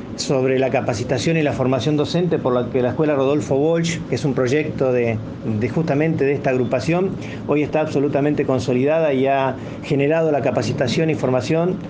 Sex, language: male, Spanish